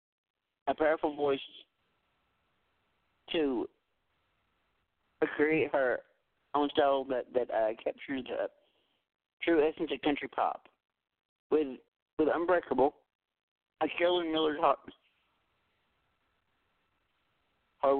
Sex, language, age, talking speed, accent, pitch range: male, English, 50-69, 85 wpm, American, 125-155 Hz